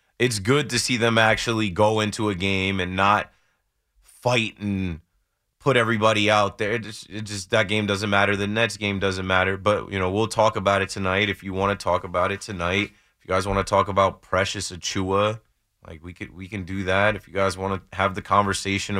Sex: male